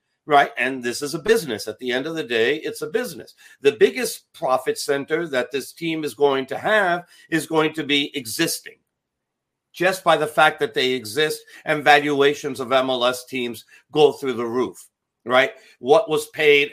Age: 50-69